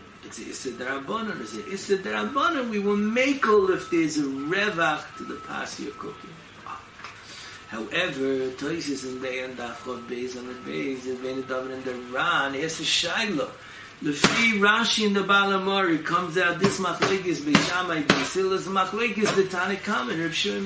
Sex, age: male, 60-79